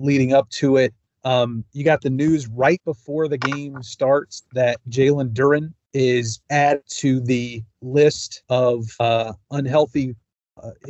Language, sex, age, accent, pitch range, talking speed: English, male, 40-59, American, 120-145 Hz, 145 wpm